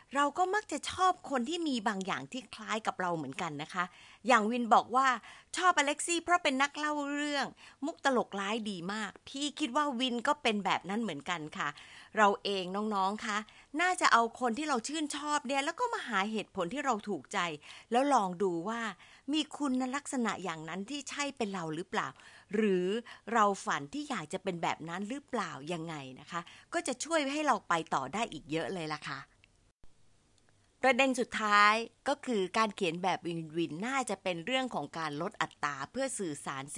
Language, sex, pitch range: Thai, female, 175-270 Hz